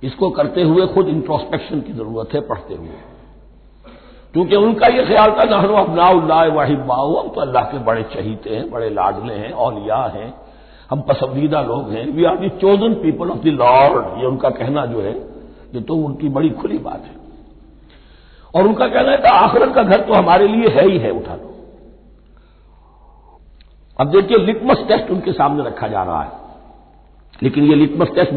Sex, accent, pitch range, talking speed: male, native, 130-195 Hz, 180 wpm